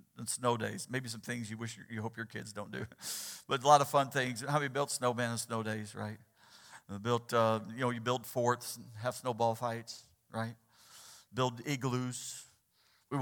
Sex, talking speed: male, 210 wpm